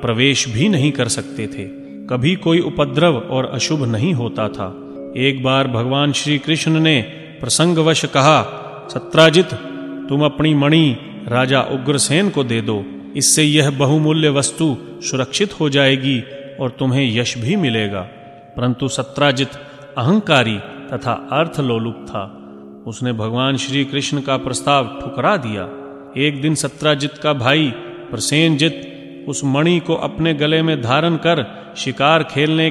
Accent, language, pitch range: native, Hindi, 125-150 Hz